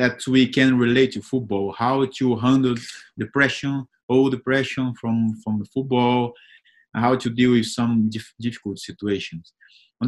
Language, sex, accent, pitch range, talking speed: English, male, Brazilian, 115-135 Hz, 145 wpm